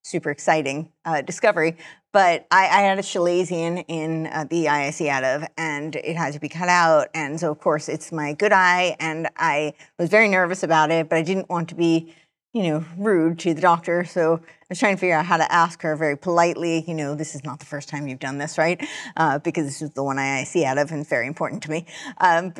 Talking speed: 240 wpm